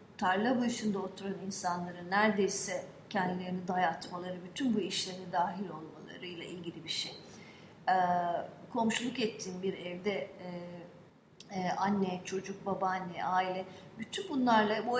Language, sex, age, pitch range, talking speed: English, female, 40-59, 185-230 Hz, 105 wpm